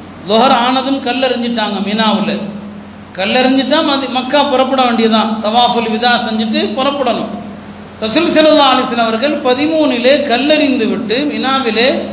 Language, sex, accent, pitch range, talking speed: Tamil, male, native, 215-270 Hz, 105 wpm